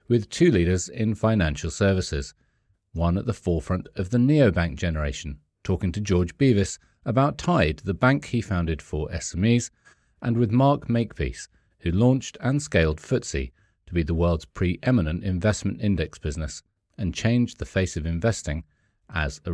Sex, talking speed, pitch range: male, 155 wpm, 85-115 Hz